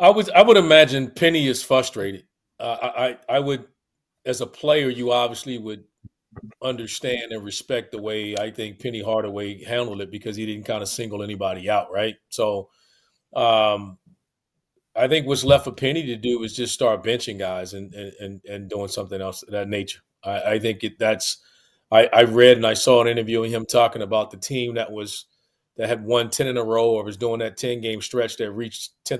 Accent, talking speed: American, 200 wpm